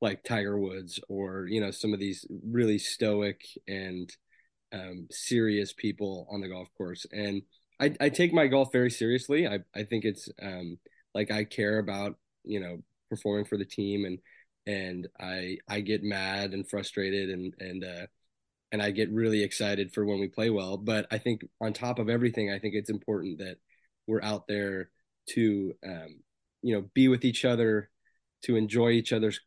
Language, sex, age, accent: English, male, 20-39, American